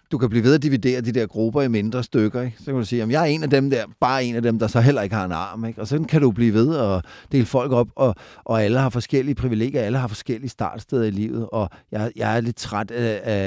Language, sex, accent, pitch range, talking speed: Danish, male, native, 105-130 Hz, 290 wpm